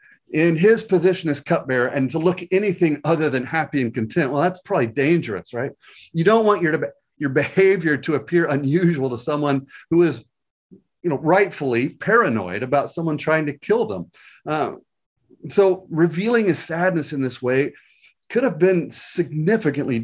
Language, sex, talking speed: English, male, 160 wpm